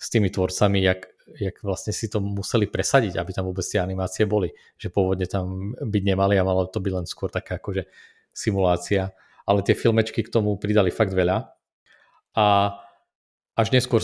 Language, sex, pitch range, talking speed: Czech, male, 95-115 Hz, 170 wpm